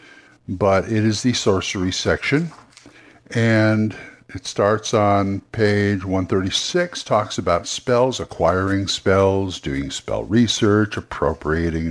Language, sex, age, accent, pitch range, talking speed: English, male, 60-79, American, 95-125 Hz, 105 wpm